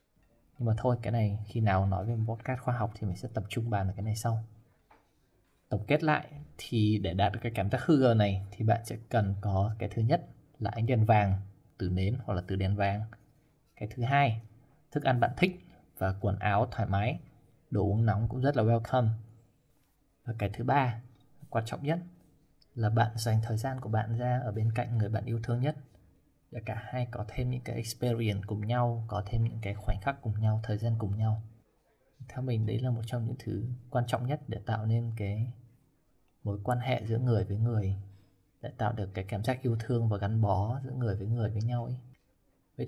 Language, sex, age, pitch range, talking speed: Vietnamese, male, 20-39, 105-125 Hz, 220 wpm